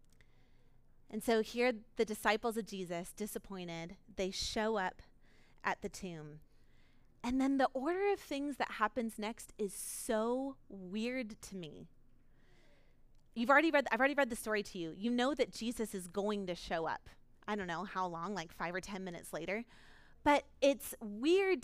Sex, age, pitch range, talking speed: female, 30-49, 190-270 Hz, 170 wpm